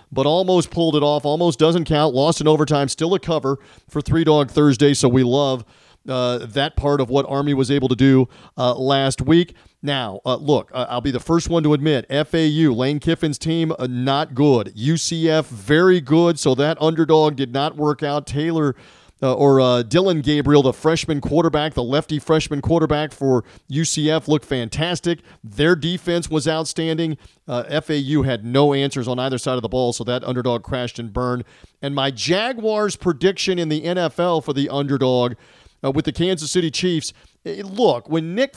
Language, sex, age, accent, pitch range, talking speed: English, male, 40-59, American, 135-160 Hz, 185 wpm